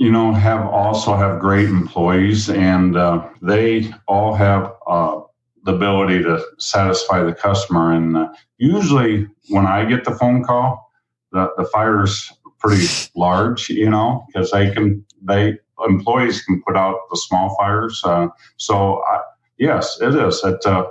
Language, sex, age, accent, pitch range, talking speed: English, male, 50-69, American, 90-105 Hz, 155 wpm